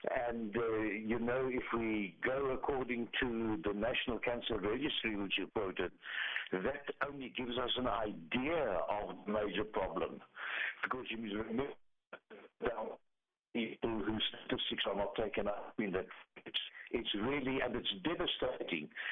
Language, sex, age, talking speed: English, male, 60-79, 145 wpm